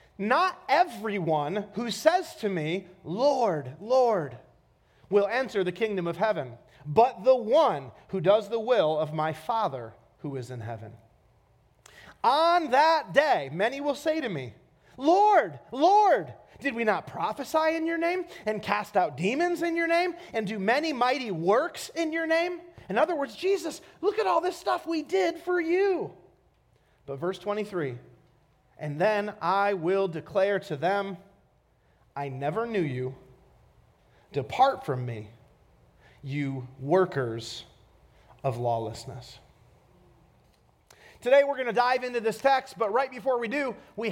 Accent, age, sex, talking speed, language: American, 30-49, male, 145 wpm, English